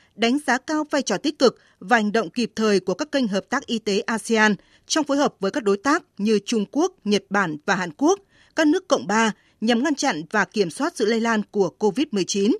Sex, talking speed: female, 240 wpm